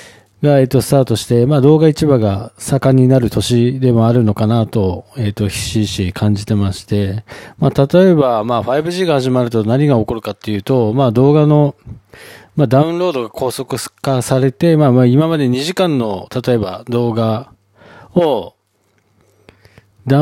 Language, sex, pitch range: Japanese, male, 110-150 Hz